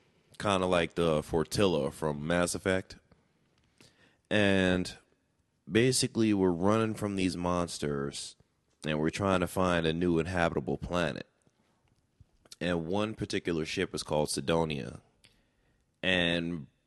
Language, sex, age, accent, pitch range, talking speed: English, male, 20-39, American, 80-95 Hz, 115 wpm